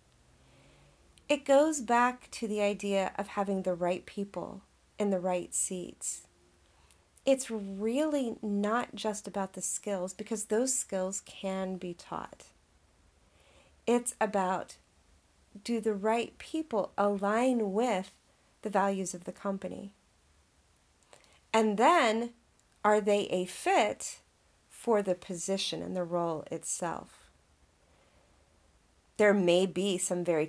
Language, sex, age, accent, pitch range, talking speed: English, female, 40-59, American, 170-215 Hz, 115 wpm